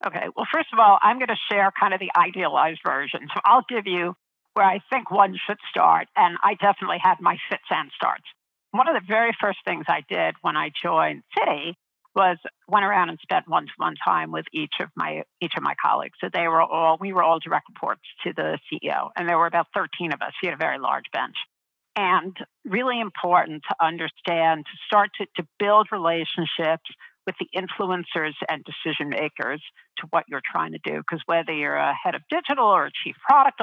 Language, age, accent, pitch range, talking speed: English, 50-69, American, 165-205 Hz, 210 wpm